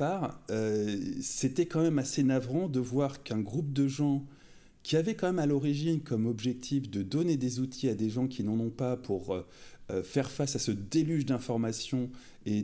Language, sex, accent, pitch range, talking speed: French, male, French, 105-140 Hz, 195 wpm